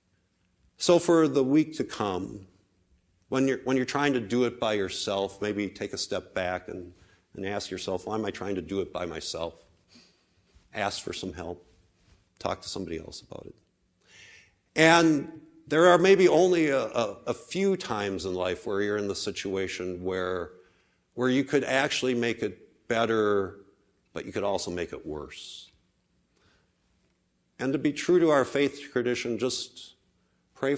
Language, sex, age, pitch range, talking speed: English, male, 50-69, 90-150 Hz, 165 wpm